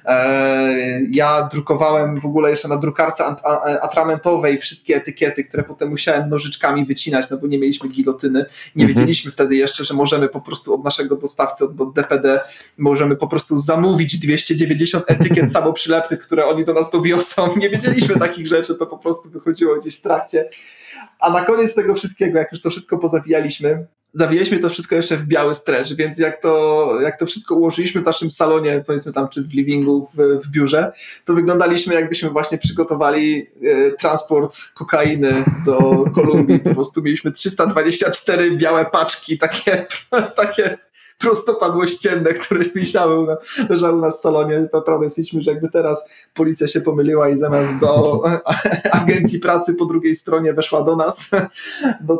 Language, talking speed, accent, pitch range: Polish, 155 wpm, native, 150-170 Hz